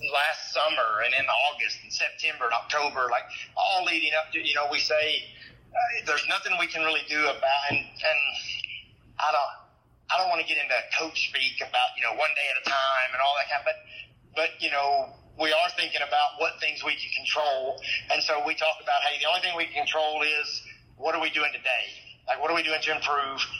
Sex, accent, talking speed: male, American, 230 wpm